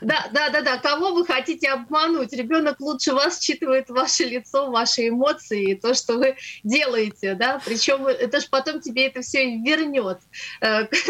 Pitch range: 220-275 Hz